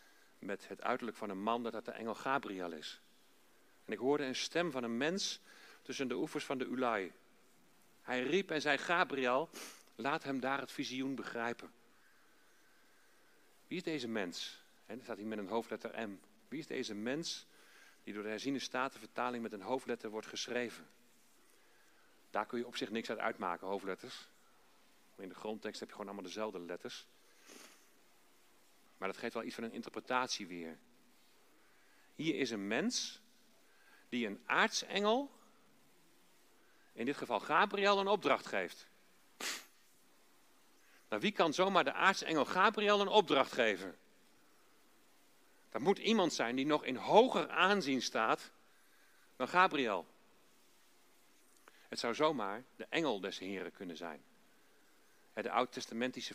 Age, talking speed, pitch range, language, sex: 40-59, 145 wpm, 115-170 Hz, Dutch, male